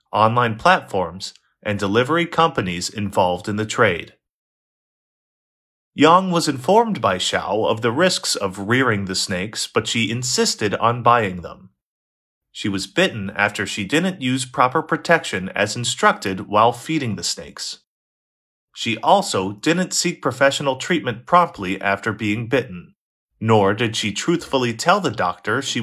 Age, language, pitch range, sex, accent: 30-49, Chinese, 105-155 Hz, male, American